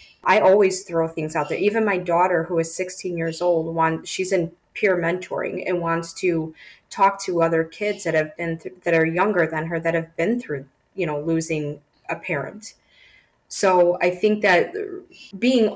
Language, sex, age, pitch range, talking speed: English, female, 20-39, 165-200 Hz, 185 wpm